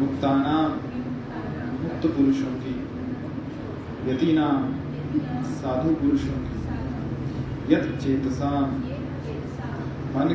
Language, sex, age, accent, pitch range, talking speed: Hindi, male, 30-49, native, 135-160 Hz, 65 wpm